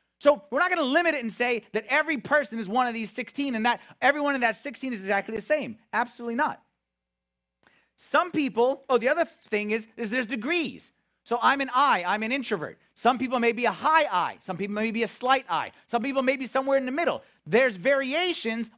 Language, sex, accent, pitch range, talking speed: English, male, American, 195-270 Hz, 220 wpm